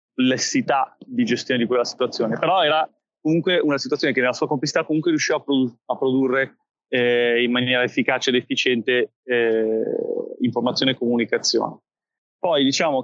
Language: Italian